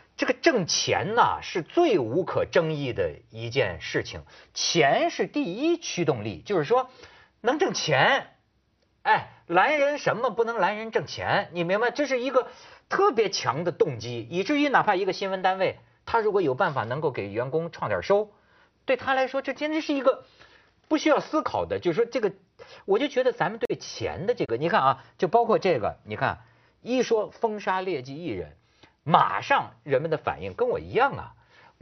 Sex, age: male, 50-69